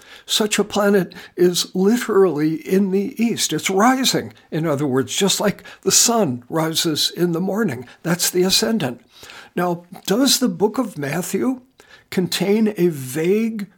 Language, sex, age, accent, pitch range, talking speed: English, male, 60-79, American, 175-220 Hz, 145 wpm